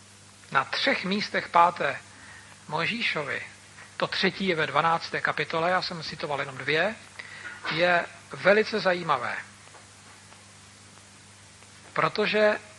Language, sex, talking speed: Slovak, male, 100 wpm